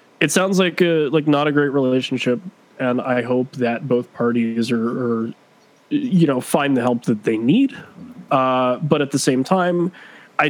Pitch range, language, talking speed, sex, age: 120-155 Hz, English, 185 wpm, male, 20-39